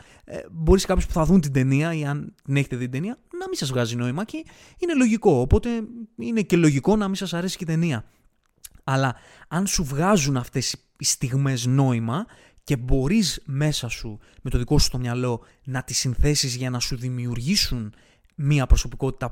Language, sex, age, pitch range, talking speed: Greek, male, 20-39, 120-165 Hz, 190 wpm